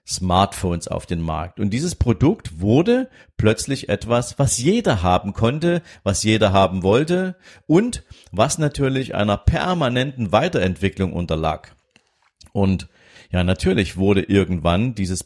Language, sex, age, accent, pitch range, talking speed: German, male, 50-69, German, 90-115 Hz, 120 wpm